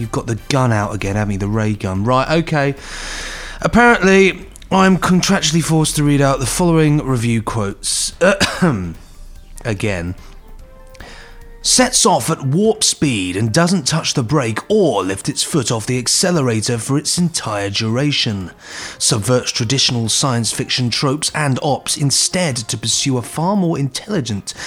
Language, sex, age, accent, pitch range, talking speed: English, male, 30-49, British, 110-155 Hz, 145 wpm